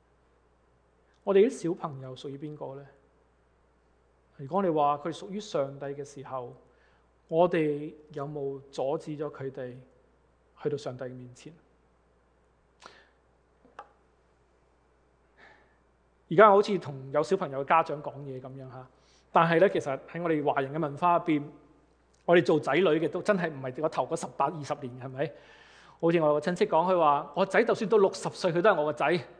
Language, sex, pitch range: English, male, 135-190 Hz